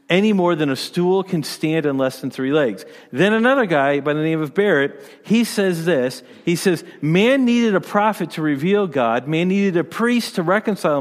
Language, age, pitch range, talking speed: English, 40-59, 145-195 Hz, 205 wpm